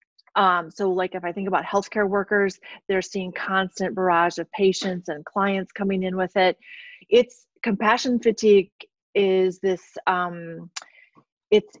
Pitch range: 180-210 Hz